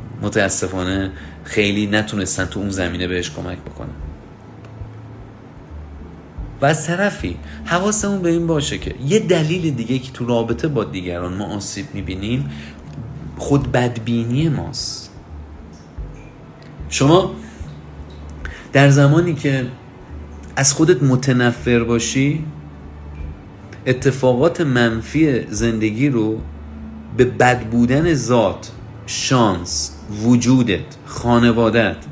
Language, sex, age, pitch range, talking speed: Persian, male, 40-59, 95-140 Hz, 90 wpm